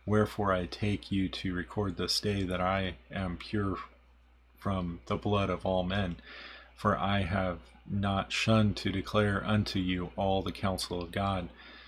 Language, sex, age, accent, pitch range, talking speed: English, male, 30-49, American, 90-100 Hz, 160 wpm